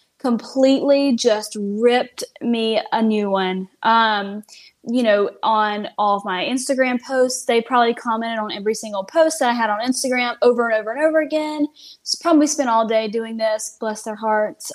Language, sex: English, female